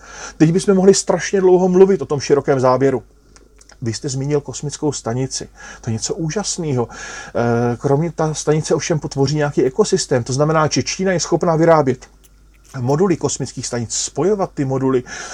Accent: Czech